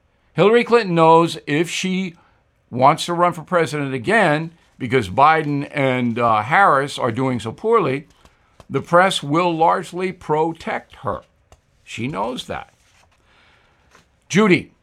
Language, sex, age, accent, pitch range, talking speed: English, male, 60-79, American, 130-165 Hz, 120 wpm